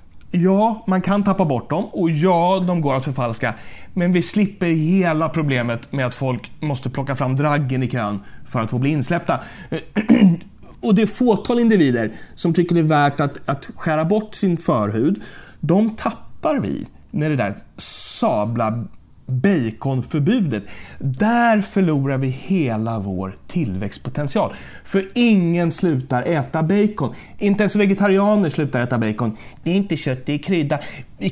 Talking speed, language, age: 150 wpm, English, 30-49